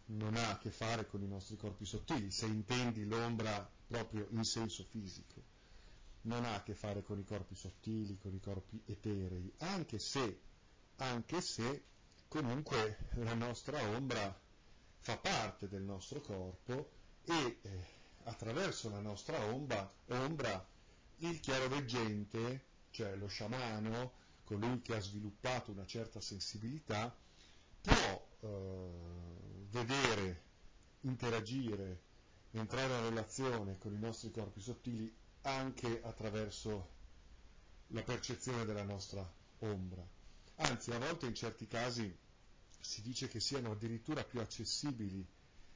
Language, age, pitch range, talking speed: Italian, 40-59, 100-120 Hz, 125 wpm